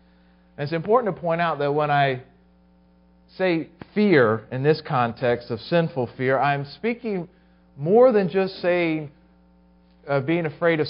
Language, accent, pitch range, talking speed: English, American, 110-175 Hz, 140 wpm